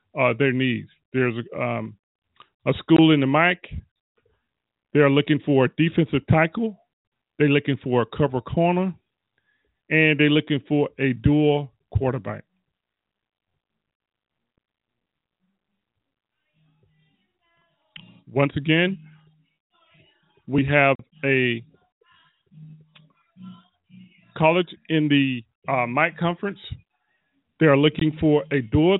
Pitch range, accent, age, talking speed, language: 140-170 Hz, American, 40-59, 95 wpm, English